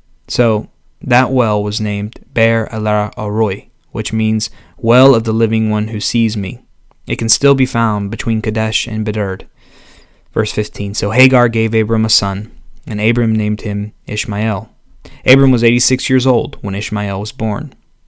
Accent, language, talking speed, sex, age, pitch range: American, English, 155 wpm, male, 20-39, 105-125 Hz